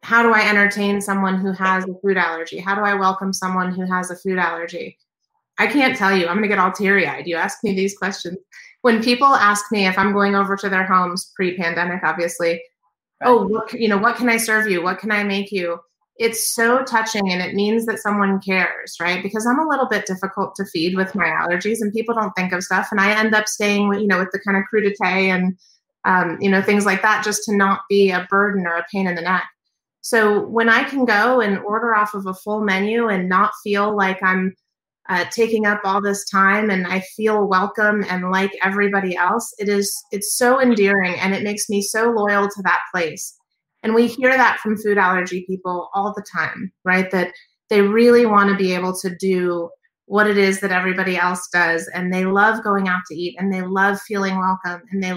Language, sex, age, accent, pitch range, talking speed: English, female, 30-49, American, 185-210 Hz, 225 wpm